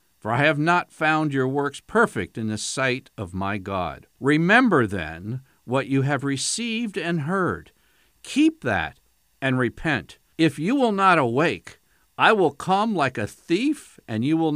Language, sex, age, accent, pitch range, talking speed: English, male, 60-79, American, 110-150 Hz, 165 wpm